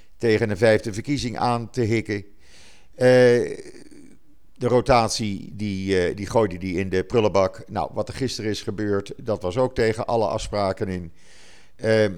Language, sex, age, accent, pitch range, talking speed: Dutch, male, 50-69, Dutch, 95-115 Hz, 160 wpm